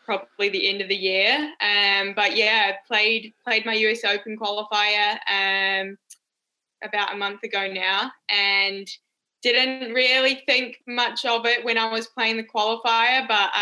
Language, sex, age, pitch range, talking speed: English, female, 10-29, 195-225 Hz, 160 wpm